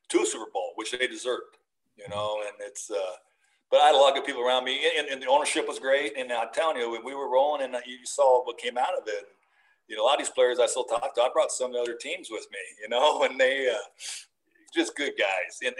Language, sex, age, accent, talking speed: English, male, 50-69, American, 275 wpm